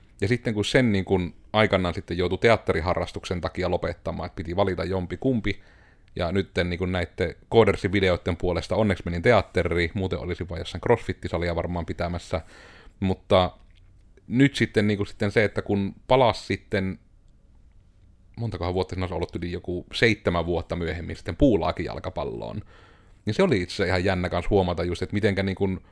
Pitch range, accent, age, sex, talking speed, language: 90-105 Hz, native, 30-49, male, 160 wpm, Finnish